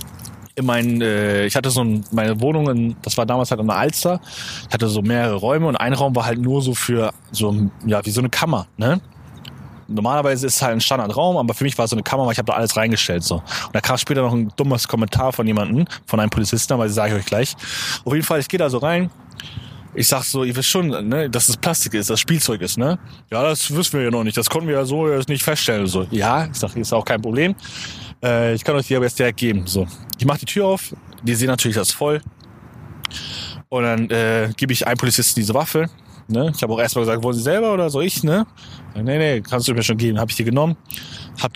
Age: 20-39